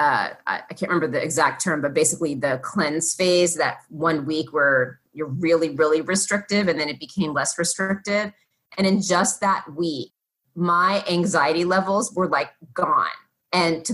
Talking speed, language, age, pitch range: 165 wpm, English, 30-49, 160-195 Hz